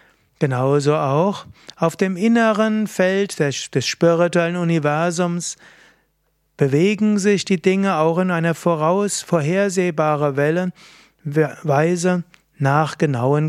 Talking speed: 90 wpm